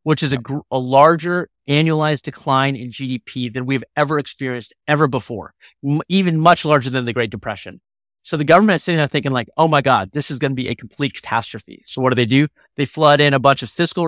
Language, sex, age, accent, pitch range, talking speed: English, male, 30-49, American, 130-170 Hz, 235 wpm